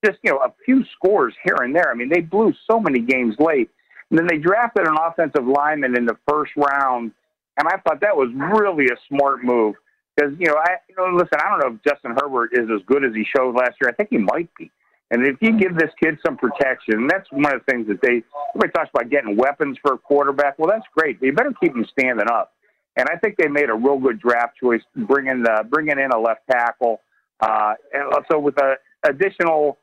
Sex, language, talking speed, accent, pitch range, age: male, English, 235 wpm, American, 125-165 Hz, 50-69